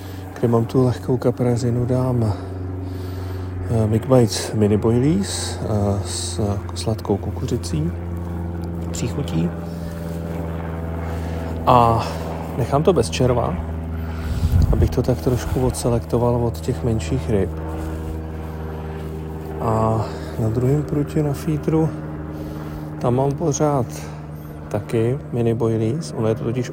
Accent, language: native, Czech